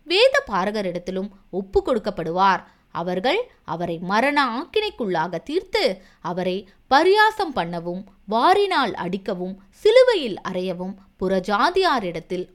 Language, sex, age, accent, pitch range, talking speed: Tamil, female, 20-39, native, 180-295 Hz, 80 wpm